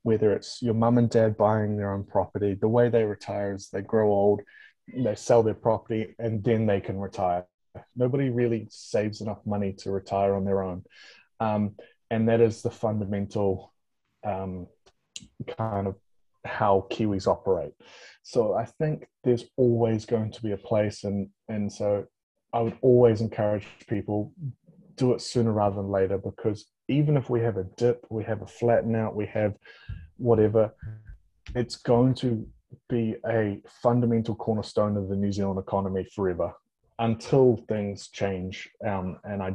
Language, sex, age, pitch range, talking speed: English, male, 20-39, 100-115 Hz, 160 wpm